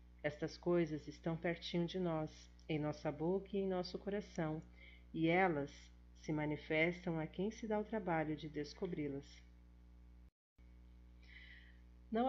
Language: Portuguese